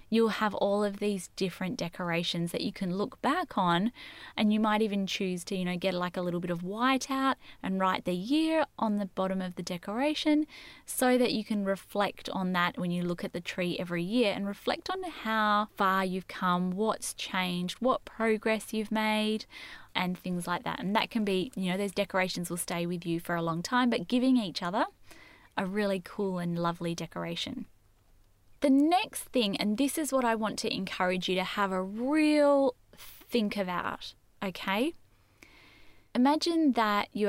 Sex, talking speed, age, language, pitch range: female, 190 wpm, 10-29, English, 175-220 Hz